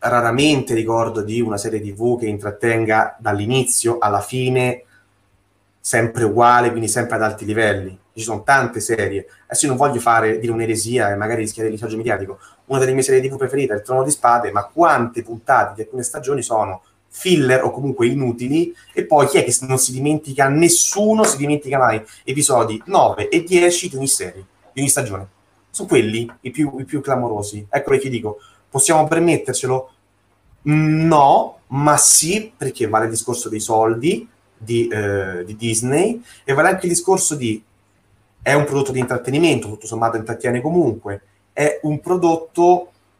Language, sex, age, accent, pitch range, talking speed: Italian, male, 30-49, native, 110-145 Hz, 170 wpm